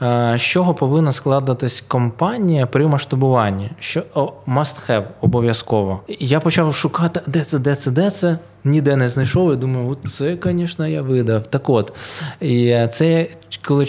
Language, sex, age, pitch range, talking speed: Ukrainian, male, 20-39, 115-145 Hz, 155 wpm